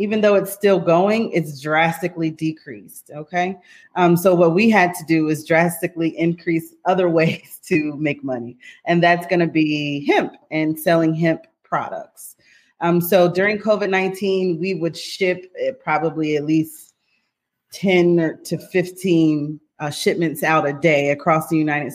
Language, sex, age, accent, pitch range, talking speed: English, female, 30-49, American, 155-190 Hz, 150 wpm